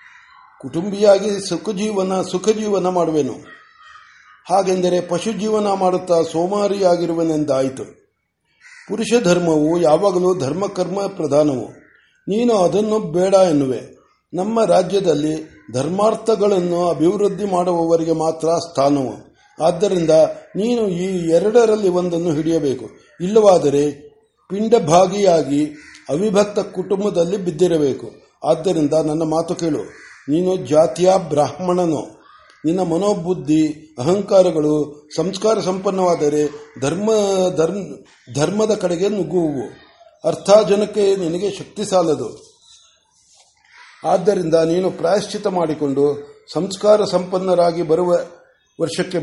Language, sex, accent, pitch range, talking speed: Kannada, male, native, 160-200 Hz, 80 wpm